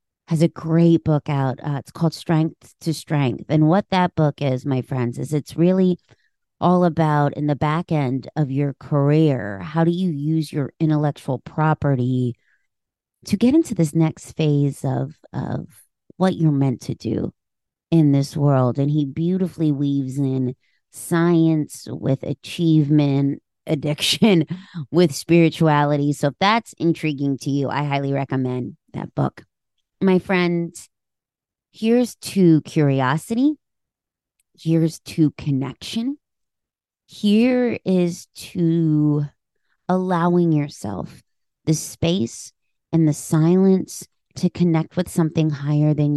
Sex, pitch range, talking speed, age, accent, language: female, 140-170 Hz, 130 wpm, 30-49, American, English